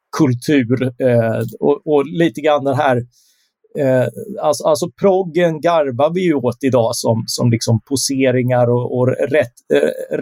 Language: Swedish